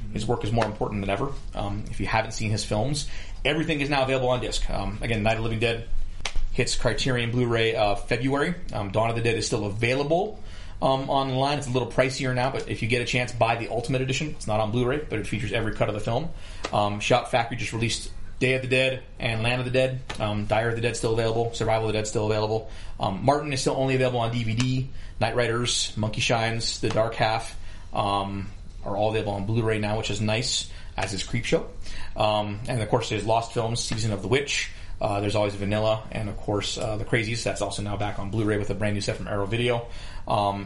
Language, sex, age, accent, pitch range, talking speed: English, male, 30-49, American, 100-125 Hz, 240 wpm